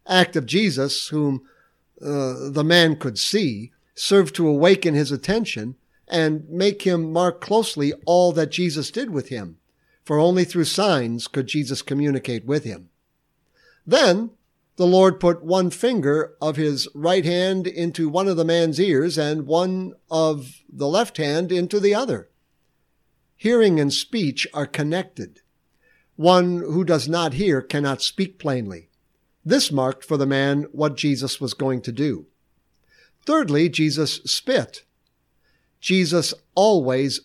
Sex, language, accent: male, English, American